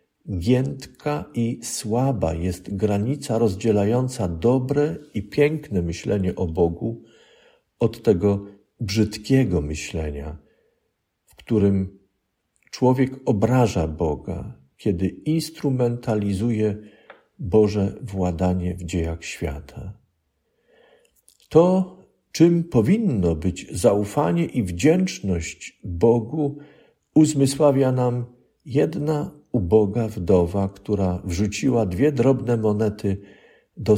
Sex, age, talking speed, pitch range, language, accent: male, 50-69, 85 wpm, 95-135 Hz, Polish, native